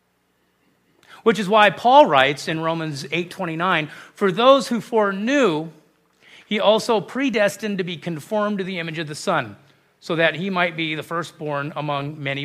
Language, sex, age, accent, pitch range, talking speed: English, male, 40-59, American, 140-200 Hz, 165 wpm